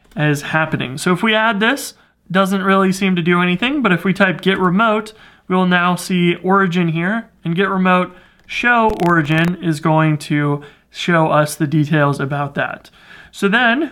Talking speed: 175 wpm